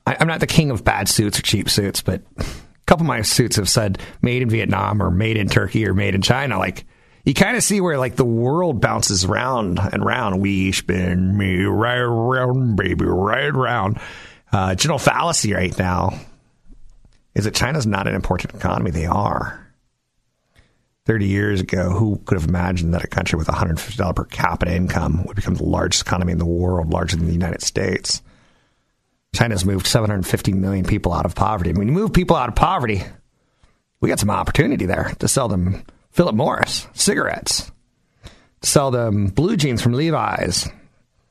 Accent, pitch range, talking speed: American, 95-125 Hz, 180 wpm